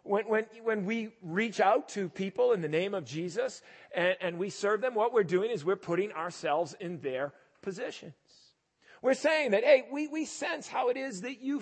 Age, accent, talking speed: 40-59, American, 200 wpm